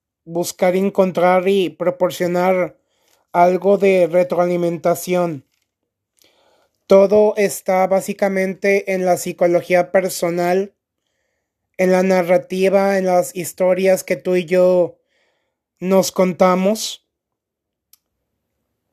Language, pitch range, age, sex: Spanish, 175-195 Hz, 30-49, male